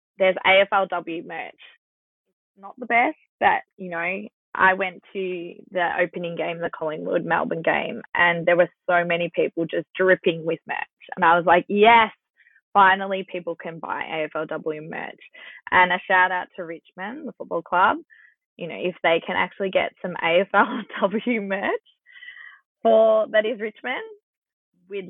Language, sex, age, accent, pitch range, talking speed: English, female, 20-39, Australian, 175-205 Hz, 150 wpm